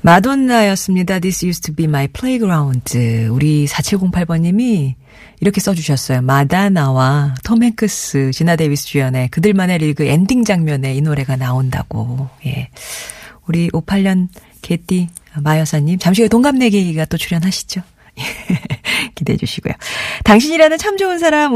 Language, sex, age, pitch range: Korean, female, 40-59, 145-210 Hz